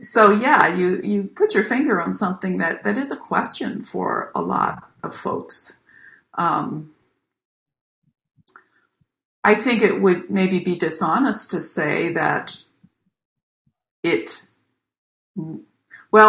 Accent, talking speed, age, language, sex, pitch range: American, 120 wpm, 60-79, English, female, 180-215 Hz